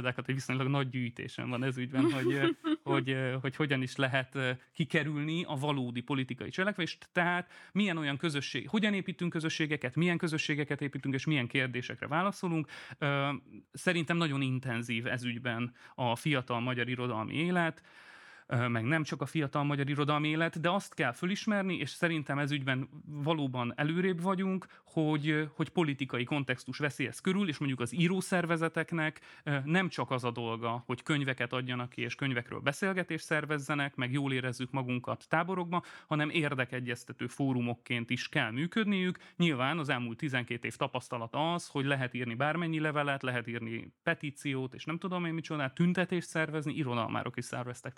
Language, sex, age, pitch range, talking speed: Hungarian, male, 30-49, 125-165 Hz, 150 wpm